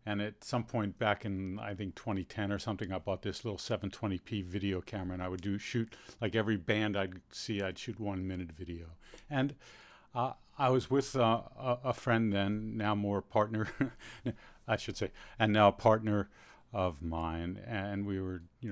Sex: male